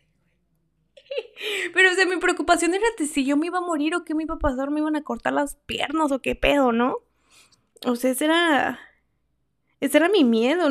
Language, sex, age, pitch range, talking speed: Spanish, female, 20-39, 225-280 Hz, 205 wpm